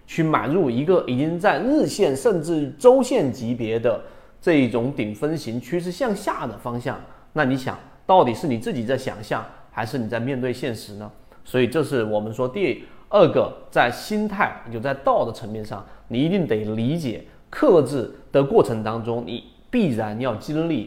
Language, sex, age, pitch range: Chinese, male, 30-49, 115-155 Hz